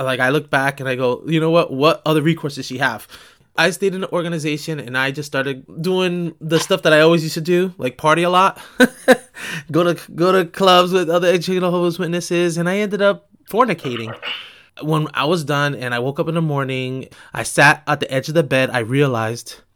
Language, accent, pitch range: English, American, 130-170 Hz